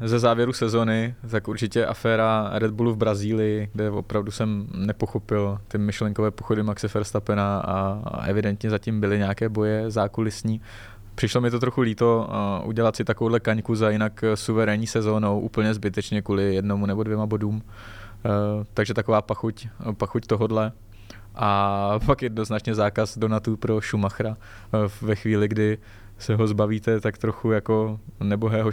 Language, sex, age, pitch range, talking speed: Czech, male, 20-39, 105-110 Hz, 140 wpm